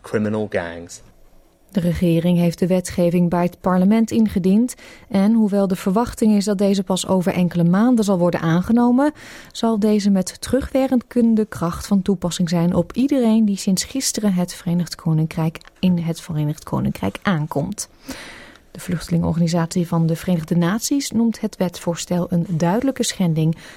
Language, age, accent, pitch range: Dutch, 30-49, Dutch, 175-210 Hz